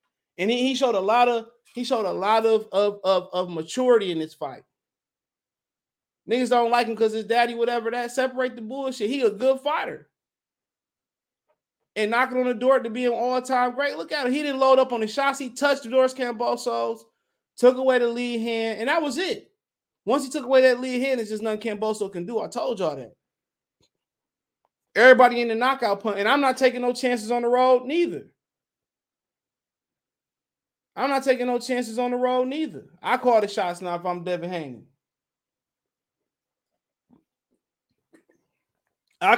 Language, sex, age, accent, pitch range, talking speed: English, male, 20-39, American, 170-255 Hz, 185 wpm